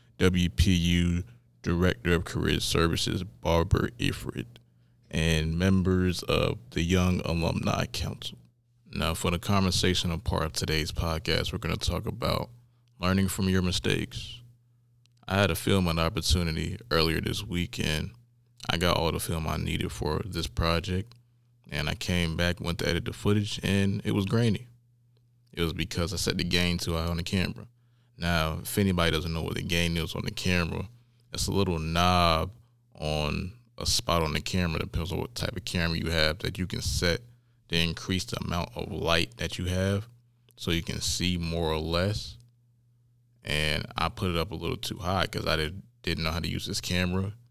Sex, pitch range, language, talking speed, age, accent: male, 85-115 Hz, English, 180 wpm, 20-39, American